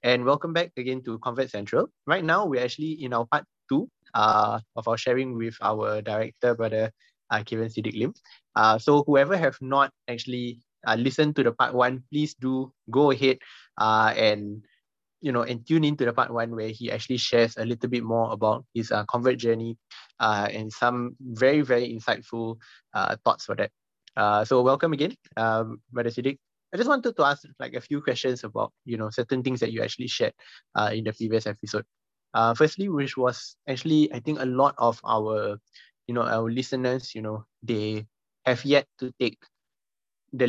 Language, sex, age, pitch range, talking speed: English, male, 20-39, 115-135 Hz, 190 wpm